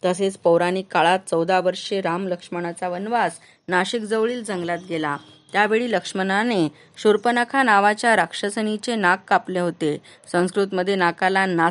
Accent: native